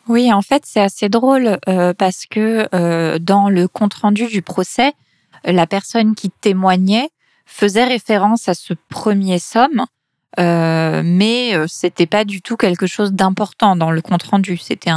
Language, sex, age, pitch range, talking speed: French, female, 20-39, 175-220 Hz, 150 wpm